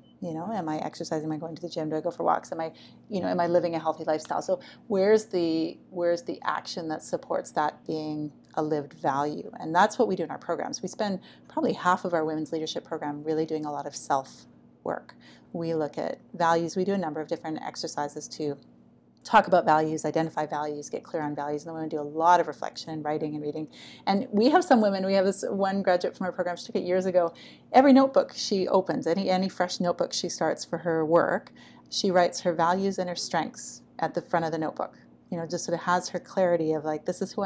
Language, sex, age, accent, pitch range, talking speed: English, female, 30-49, American, 155-185 Hz, 245 wpm